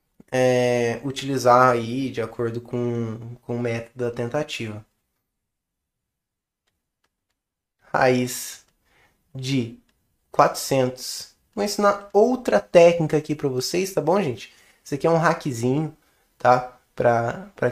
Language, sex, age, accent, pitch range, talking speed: Portuguese, male, 20-39, Brazilian, 120-170 Hz, 100 wpm